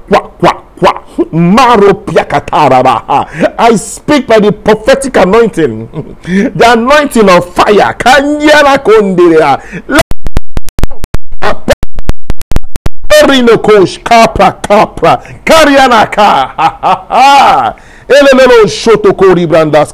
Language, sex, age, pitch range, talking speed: English, male, 50-69, 155-230 Hz, 70 wpm